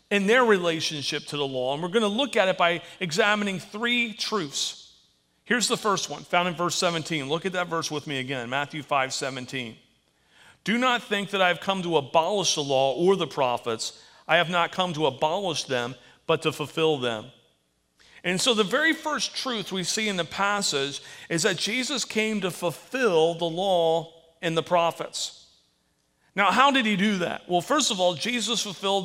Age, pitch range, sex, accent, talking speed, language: 40-59, 150-205 Hz, male, American, 190 wpm, English